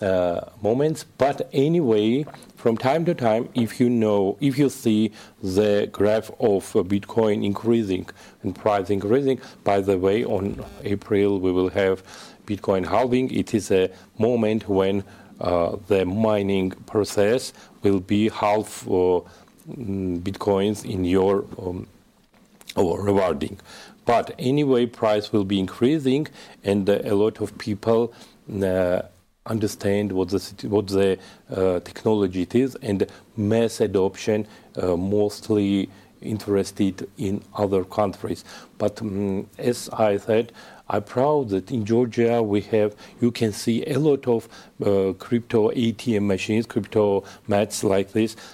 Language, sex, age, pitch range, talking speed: English, male, 40-59, 100-120 Hz, 130 wpm